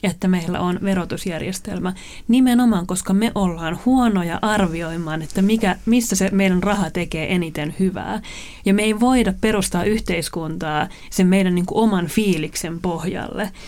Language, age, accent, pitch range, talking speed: Finnish, 30-49, native, 170-210 Hz, 140 wpm